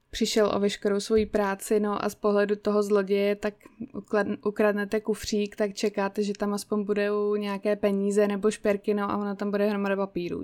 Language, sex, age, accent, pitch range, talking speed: Czech, female, 20-39, native, 200-240 Hz, 180 wpm